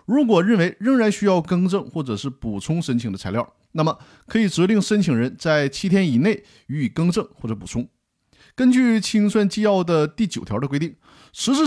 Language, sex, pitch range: Chinese, male, 135-210 Hz